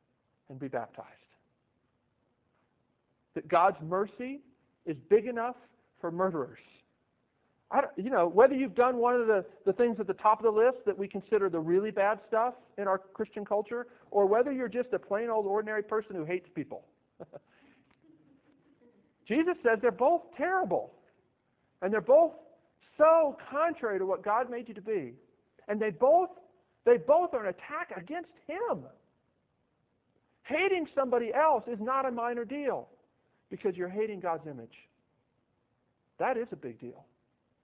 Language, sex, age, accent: English, male, 50-69, American